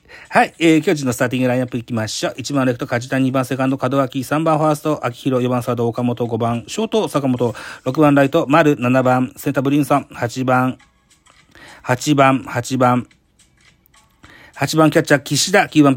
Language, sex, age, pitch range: Japanese, male, 40-59, 120-155 Hz